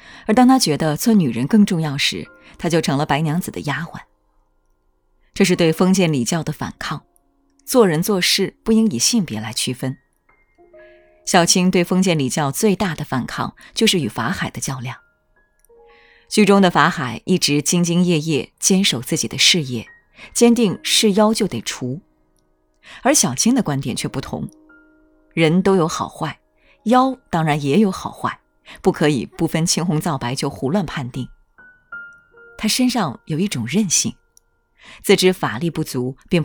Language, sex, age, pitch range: Chinese, female, 20-39, 135-195 Hz